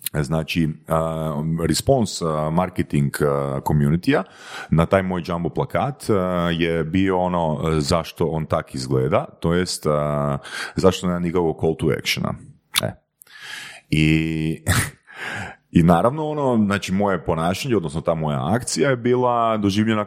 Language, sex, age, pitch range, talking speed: Croatian, male, 30-49, 80-110 Hz, 130 wpm